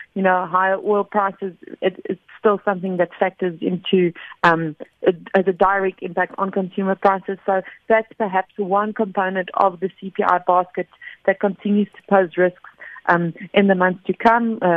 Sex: female